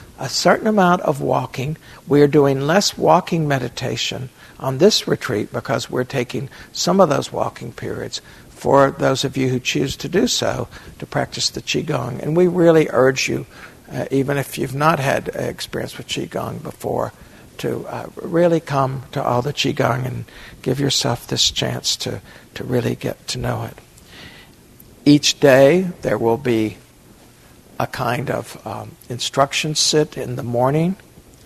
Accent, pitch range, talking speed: American, 125-150 Hz, 160 wpm